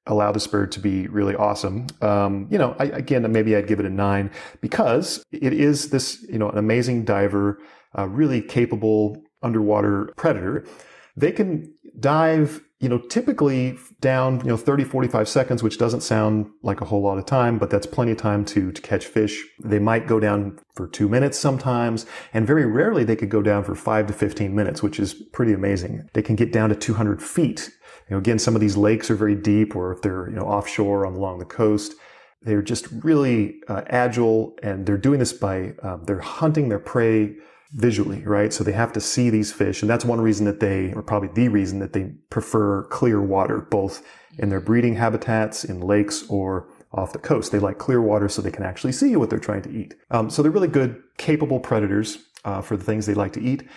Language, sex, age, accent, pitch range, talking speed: English, male, 30-49, American, 100-120 Hz, 215 wpm